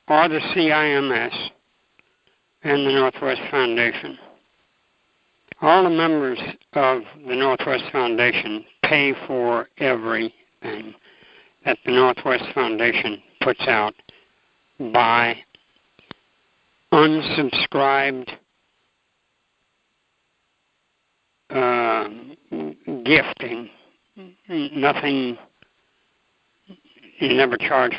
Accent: American